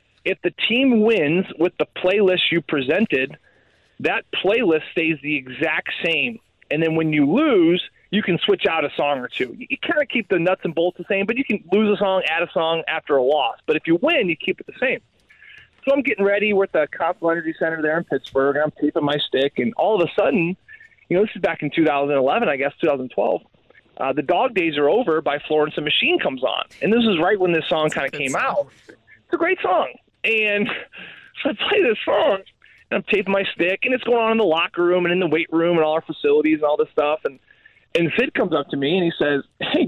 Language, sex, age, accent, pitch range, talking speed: English, male, 30-49, American, 155-245 Hz, 240 wpm